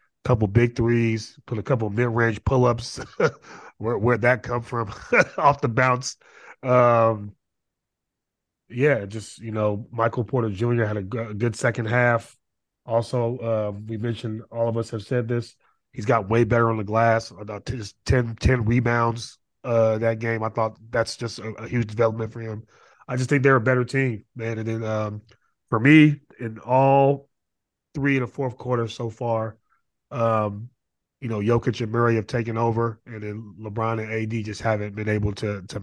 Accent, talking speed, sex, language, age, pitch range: American, 185 wpm, male, English, 30-49, 110-120 Hz